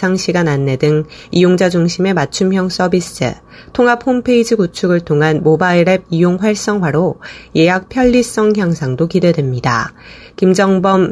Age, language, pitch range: 30-49, Korean, 160-205 Hz